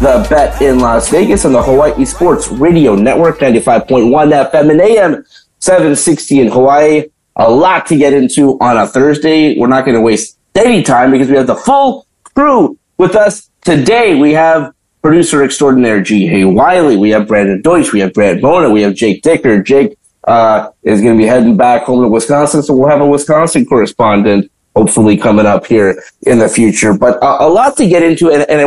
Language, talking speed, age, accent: English, 200 wpm, 30-49, American